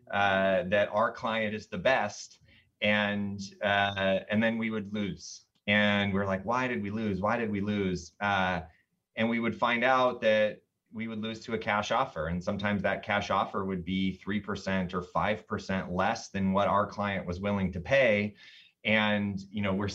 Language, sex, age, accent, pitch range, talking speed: English, male, 30-49, American, 95-110 Hz, 185 wpm